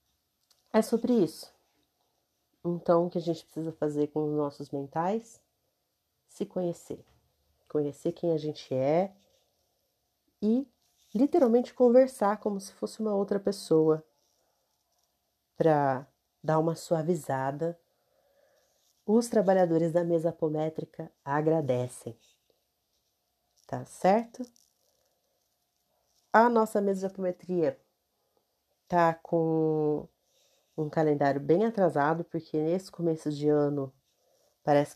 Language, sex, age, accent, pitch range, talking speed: Portuguese, female, 40-59, Brazilian, 145-190 Hz, 100 wpm